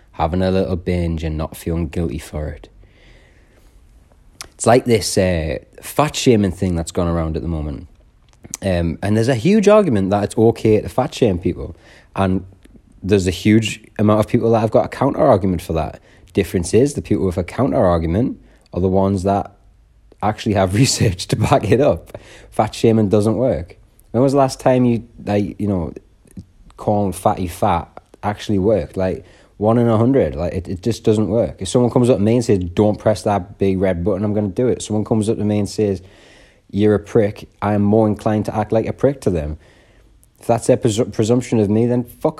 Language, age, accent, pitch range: English, 20-39, British, 95-125 Hz